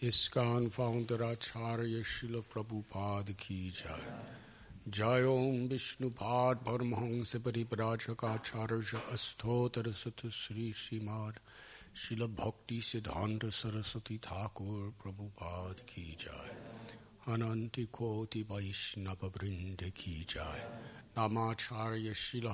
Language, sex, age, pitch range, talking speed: Italian, male, 60-79, 105-120 Hz, 75 wpm